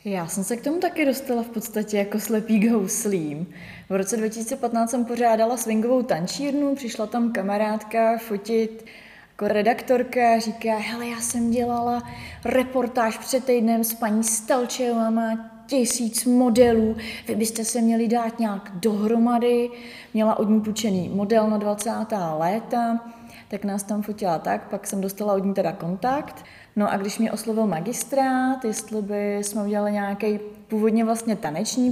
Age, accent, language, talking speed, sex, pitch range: 20-39, native, Czech, 150 wpm, female, 200-235 Hz